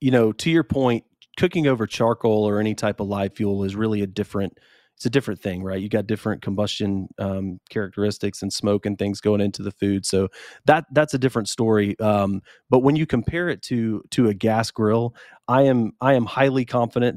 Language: English